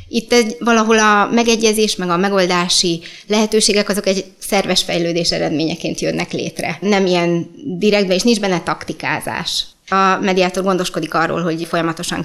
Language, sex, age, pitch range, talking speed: Hungarian, female, 20-39, 170-210 Hz, 140 wpm